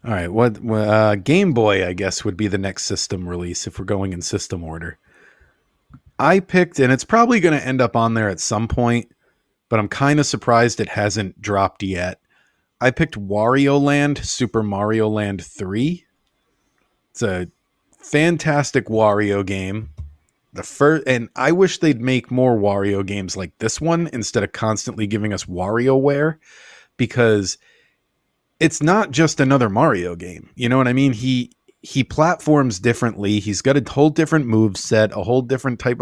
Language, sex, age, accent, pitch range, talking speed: English, male, 30-49, American, 100-140 Hz, 170 wpm